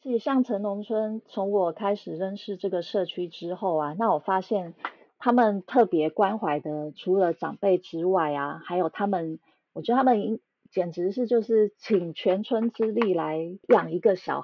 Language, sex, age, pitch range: Chinese, female, 30-49, 165-215 Hz